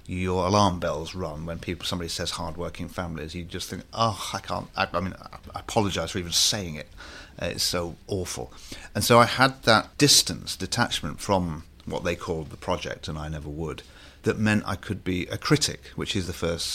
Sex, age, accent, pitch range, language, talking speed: male, 40-59, British, 80-95 Hz, English, 200 wpm